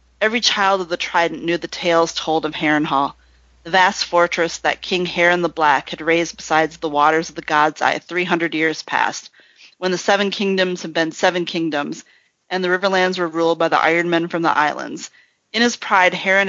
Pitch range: 160-185 Hz